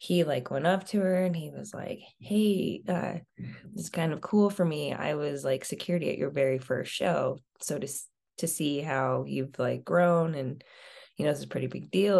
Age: 20-39